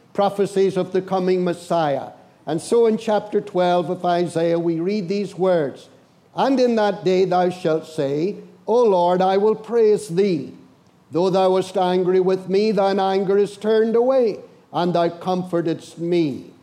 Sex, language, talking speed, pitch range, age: male, English, 160 wpm, 165-210 Hz, 60-79